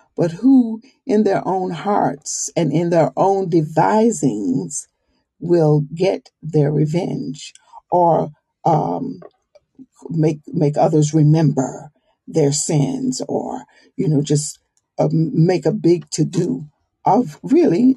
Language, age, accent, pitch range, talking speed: English, 50-69, American, 155-225 Hz, 115 wpm